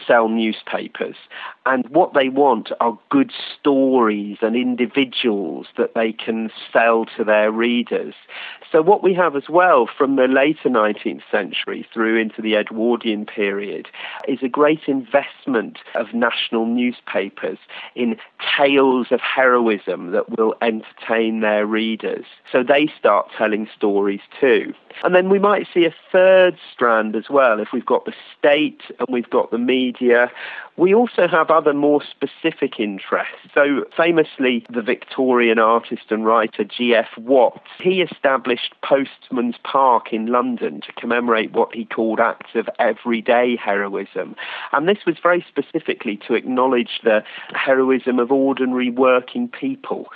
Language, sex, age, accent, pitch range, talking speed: English, male, 40-59, British, 110-140 Hz, 145 wpm